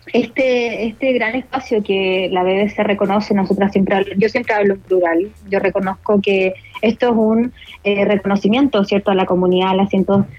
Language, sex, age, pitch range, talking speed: Spanish, female, 20-39, 200-230 Hz, 180 wpm